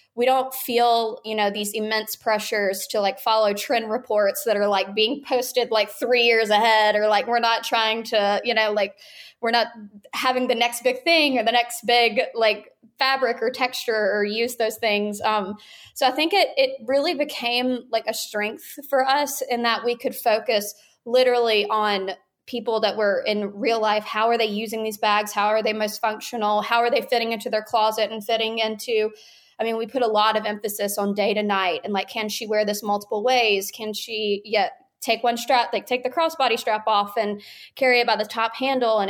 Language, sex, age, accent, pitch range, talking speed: English, female, 20-39, American, 210-245 Hz, 210 wpm